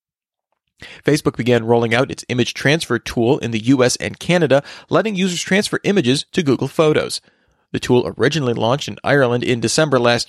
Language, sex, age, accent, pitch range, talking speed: English, male, 30-49, American, 120-160 Hz, 170 wpm